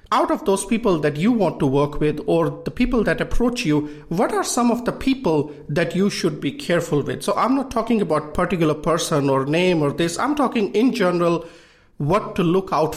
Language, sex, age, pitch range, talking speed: English, male, 50-69, 145-195 Hz, 215 wpm